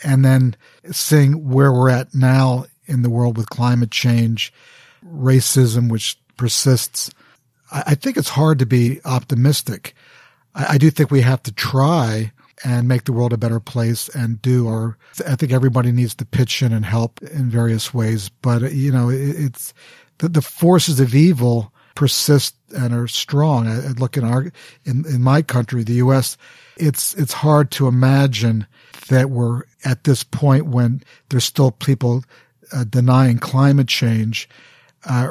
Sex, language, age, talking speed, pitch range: male, German, 50-69, 165 wpm, 120-140 Hz